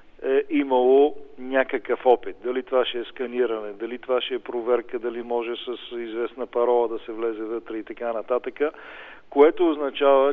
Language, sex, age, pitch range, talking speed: Bulgarian, male, 40-59, 115-145 Hz, 165 wpm